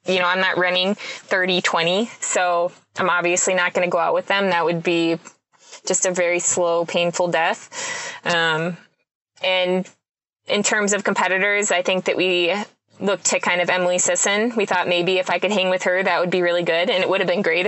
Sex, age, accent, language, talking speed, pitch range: female, 20-39, American, English, 205 wpm, 175-200 Hz